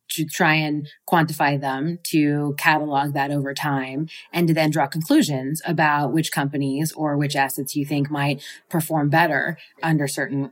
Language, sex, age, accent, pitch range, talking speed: English, female, 30-49, American, 145-160 Hz, 160 wpm